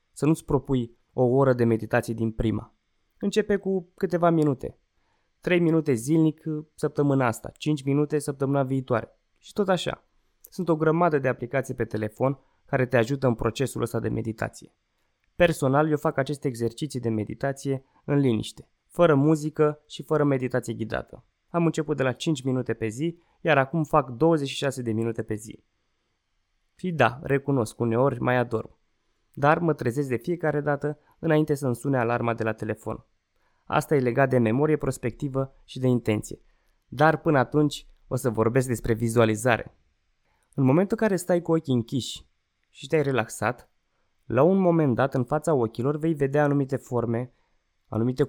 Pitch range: 120-150 Hz